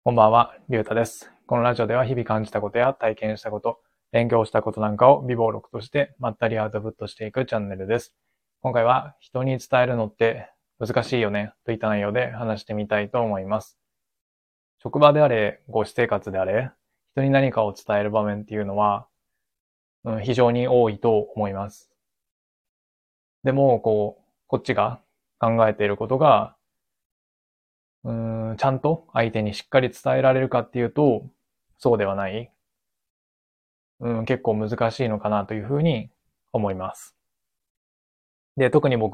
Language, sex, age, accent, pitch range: Japanese, male, 20-39, native, 105-120 Hz